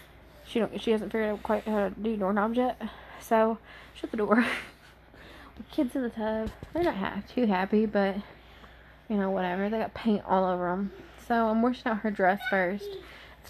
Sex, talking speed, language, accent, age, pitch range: female, 190 wpm, English, American, 20-39, 200-260 Hz